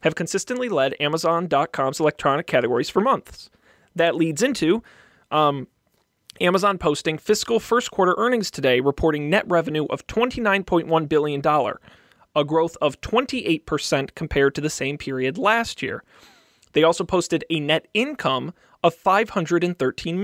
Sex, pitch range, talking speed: male, 140-175 Hz, 130 wpm